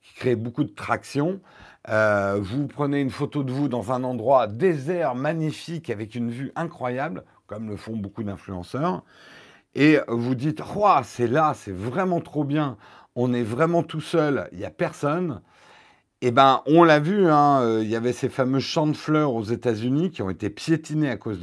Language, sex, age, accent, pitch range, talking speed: French, male, 50-69, French, 120-165 Hz, 195 wpm